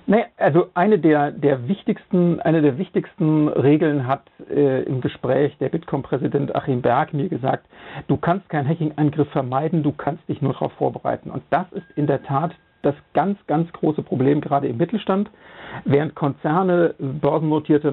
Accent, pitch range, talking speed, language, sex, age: German, 145-185 Hz, 165 wpm, German, male, 60-79